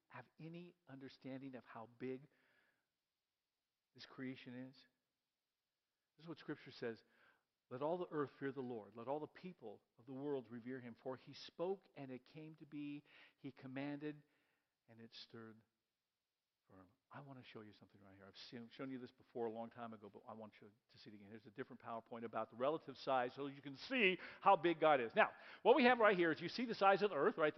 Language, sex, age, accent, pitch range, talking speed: English, male, 50-69, American, 130-195 Hz, 220 wpm